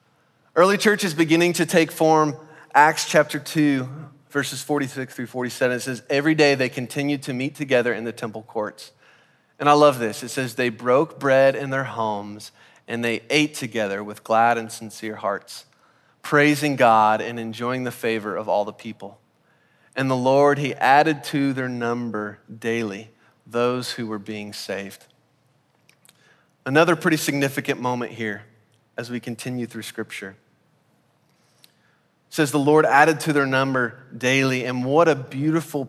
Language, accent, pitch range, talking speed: English, American, 120-155 Hz, 155 wpm